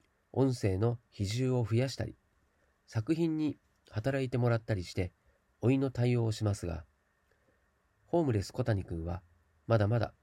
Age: 40-59